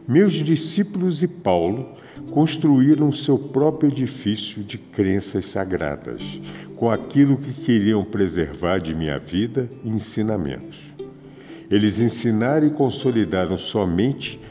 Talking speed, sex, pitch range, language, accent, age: 110 wpm, male, 100-135 Hz, Portuguese, Brazilian, 60-79